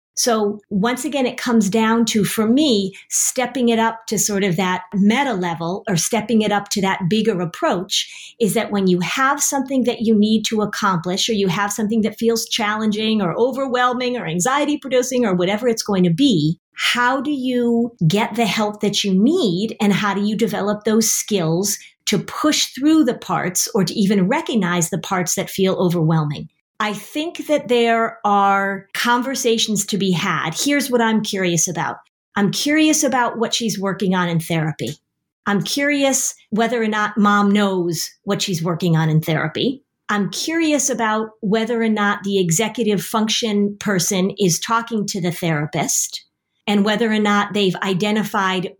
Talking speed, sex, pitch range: 175 wpm, female, 190-235 Hz